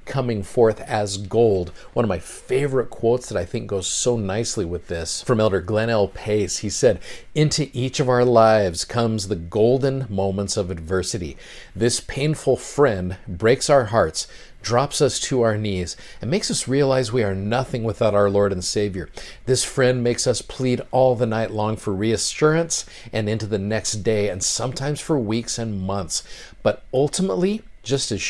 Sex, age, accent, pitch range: male, 50-69, American, 100-130 Hz